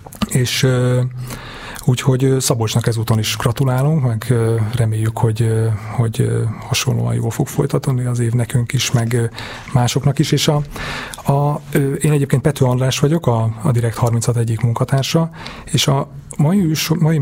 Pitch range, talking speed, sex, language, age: 110-125 Hz, 125 wpm, male, Hungarian, 30-49